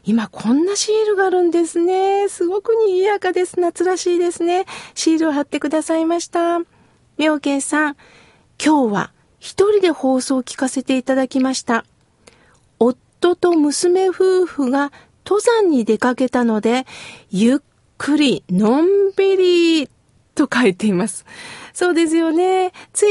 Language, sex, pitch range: Japanese, female, 255-340 Hz